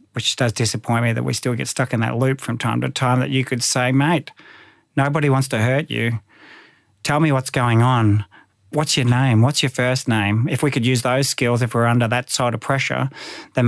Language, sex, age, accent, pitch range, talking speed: English, male, 40-59, Australian, 115-135 Hz, 230 wpm